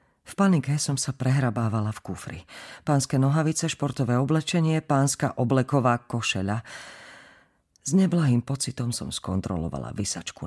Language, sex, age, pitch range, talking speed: Slovak, female, 40-59, 115-155 Hz, 115 wpm